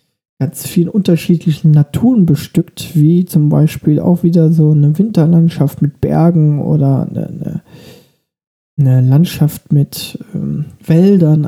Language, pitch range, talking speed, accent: German, 150-170 Hz, 115 wpm, German